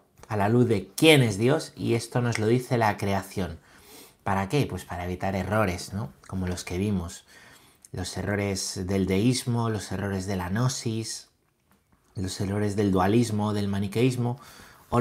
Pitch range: 100-145 Hz